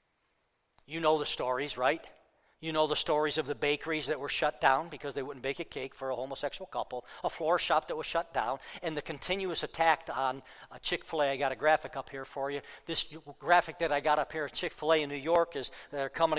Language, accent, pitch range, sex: English, American, 150-225 Hz, male